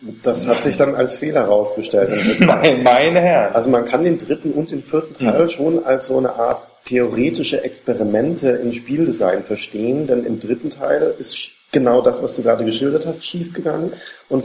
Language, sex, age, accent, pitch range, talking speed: German, male, 40-59, German, 115-135 Hz, 175 wpm